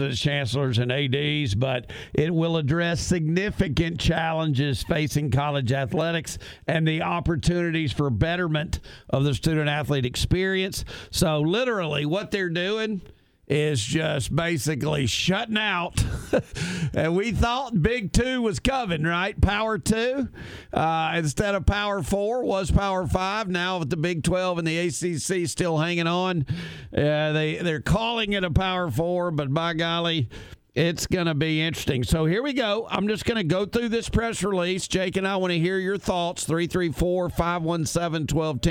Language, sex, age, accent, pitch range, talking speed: English, male, 50-69, American, 145-180 Hz, 150 wpm